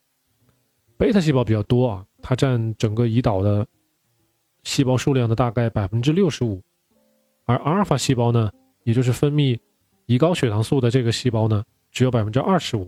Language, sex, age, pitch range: Chinese, male, 20-39, 110-140 Hz